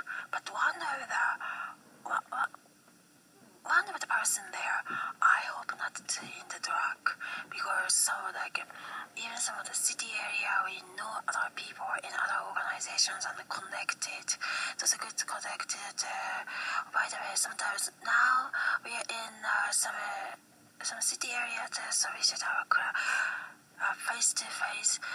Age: 20-39